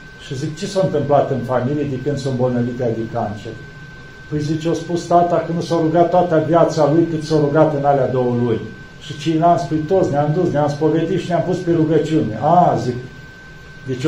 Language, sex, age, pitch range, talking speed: Romanian, male, 50-69, 140-180 Hz, 215 wpm